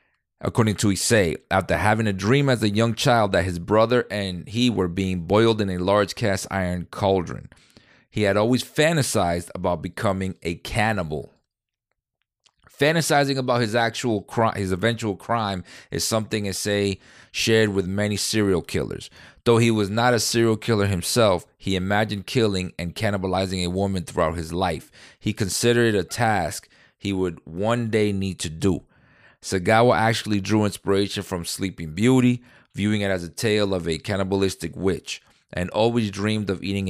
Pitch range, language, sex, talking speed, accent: 90-110 Hz, English, male, 165 wpm, American